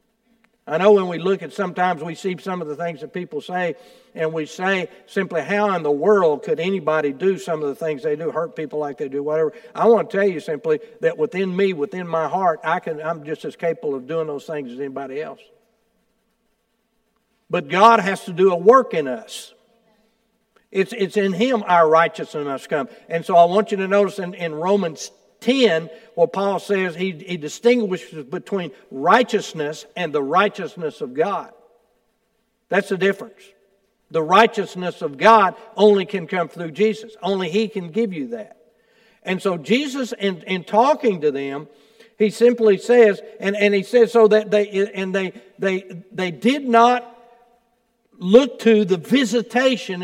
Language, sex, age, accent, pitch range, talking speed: English, male, 60-79, American, 175-225 Hz, 185 wpm